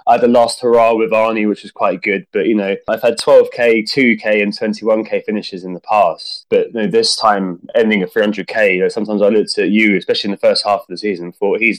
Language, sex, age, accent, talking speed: English, male, 20-39, British, 250 wpm